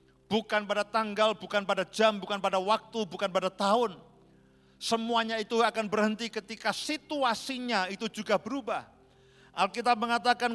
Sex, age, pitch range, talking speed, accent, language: male, 50-69, 180-225 Hz, 130 wpm, native, Indonesian